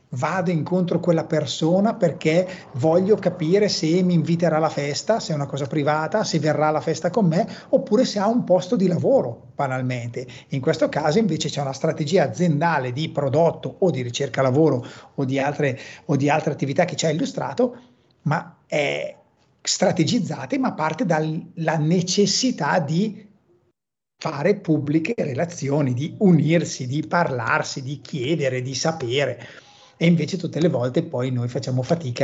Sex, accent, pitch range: male, native, 140-185 Hz